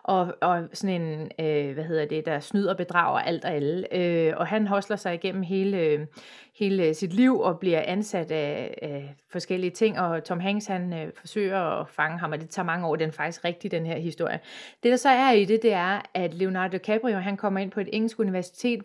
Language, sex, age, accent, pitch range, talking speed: Danish, female, 30-49, native, 180-235 Hz, 225 wpm